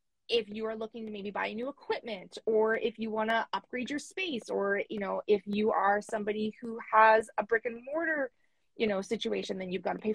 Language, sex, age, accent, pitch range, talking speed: English, female, 20-39, American, 215-275 Hz, 225 wpm